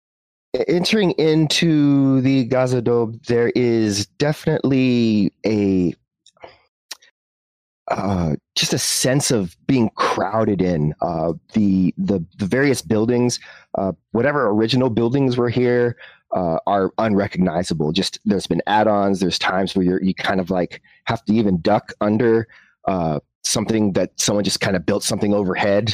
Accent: American